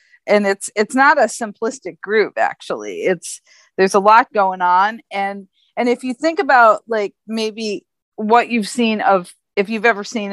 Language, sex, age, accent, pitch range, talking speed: English, female, 40-59, American, 180-220 Hz, 175 wpm